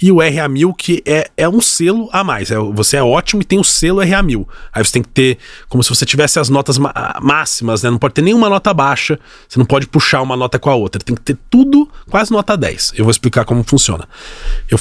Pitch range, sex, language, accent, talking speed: 115-155 Hz, male, Portuguese, Brazilian, 240 wpm